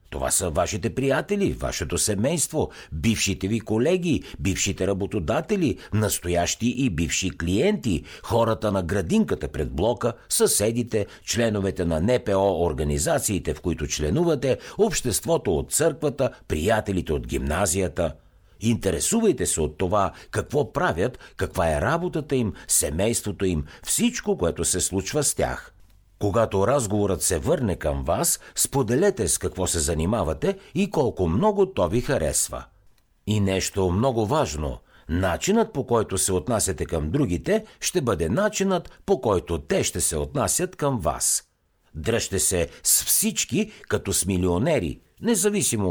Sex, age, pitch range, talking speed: male, 60-79, 85-135 Hz, 130 wpm